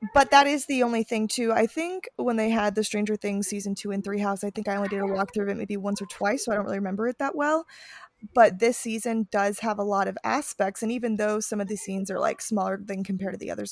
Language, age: English, 20-39